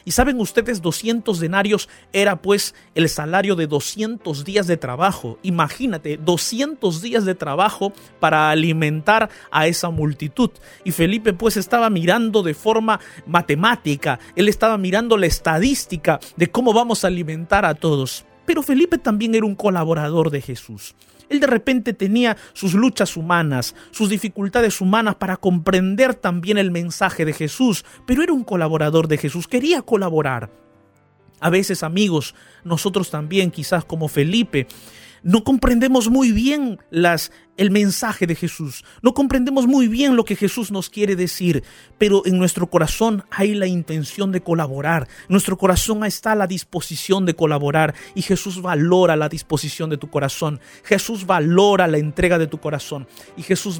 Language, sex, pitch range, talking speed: Spanish, male, 160-215 Hz, 155 wpm